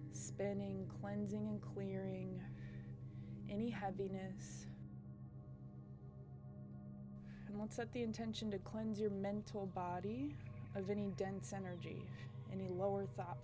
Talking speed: 105 wpm